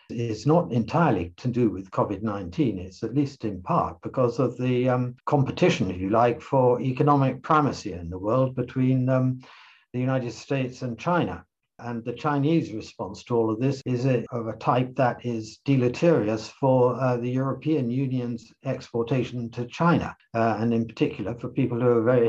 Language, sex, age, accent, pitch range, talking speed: English, male, 60-79, British, 110-135 Hz, 175 wpm